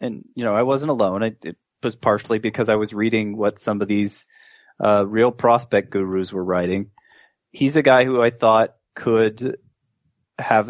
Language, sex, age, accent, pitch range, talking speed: English, male, 20-39, American, 105-135 Hz, 180 wpm